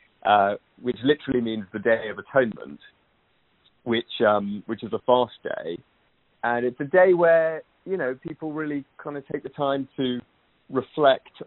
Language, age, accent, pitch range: English, 30-49, British, 100-125 Hz